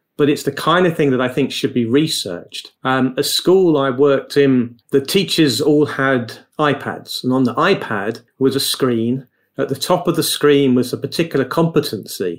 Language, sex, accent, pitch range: English, male, British, 130-150 Hz